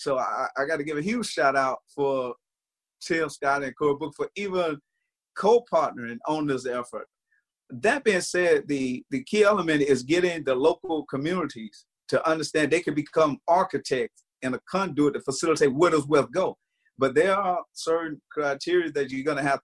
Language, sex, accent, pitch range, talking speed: English, male, American, 135-160 Hz, 175 wpm